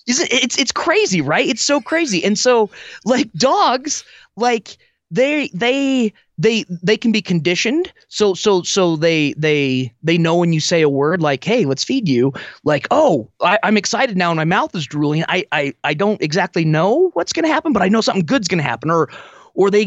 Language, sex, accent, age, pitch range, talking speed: English, male, American, 20-39, 155-220 Hz, 195 wpm